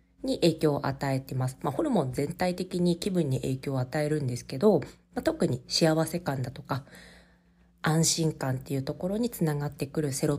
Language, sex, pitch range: Japanese, female, 135-185 Hz